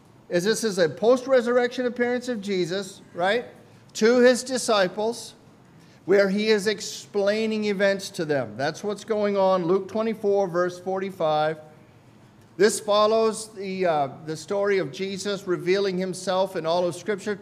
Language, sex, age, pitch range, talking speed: English, male, 50-69, 150-205 Hz, 140 wpm